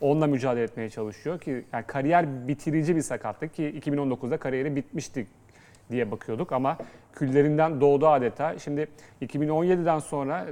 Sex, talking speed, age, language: male, 130 wpm, 30-49, Turkish